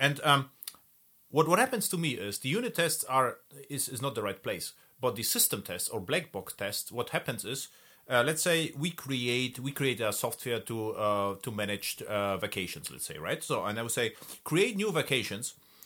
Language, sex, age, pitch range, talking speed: English, male, 30-49, 105-145 Hz, 210 wpm